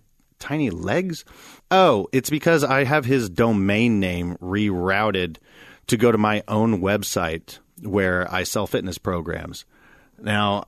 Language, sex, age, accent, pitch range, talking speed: English, male, 30-49, American, 95-145 Hz, 130 wpm